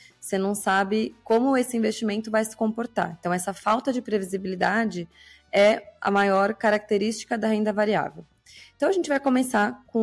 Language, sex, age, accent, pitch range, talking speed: Portuguese, female, 20-39, Brazilian, 185-230 Hz, 160 wpm